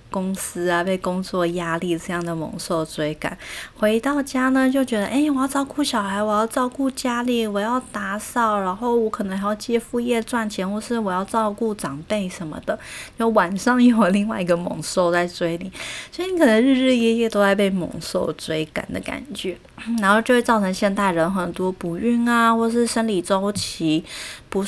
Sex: female